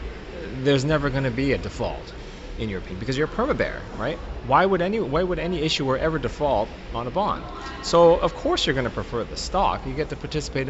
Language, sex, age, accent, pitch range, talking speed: English, male, 30-49, American, 100-135 Hz, 220 wpm